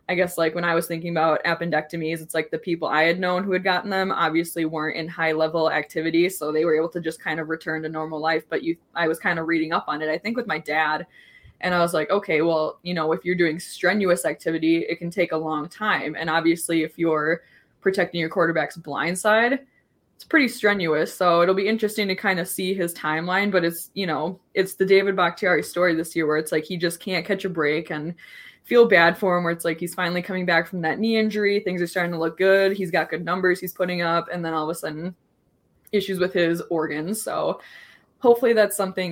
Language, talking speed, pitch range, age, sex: English, 240 wpm, 160-185 Hz, 20-39, female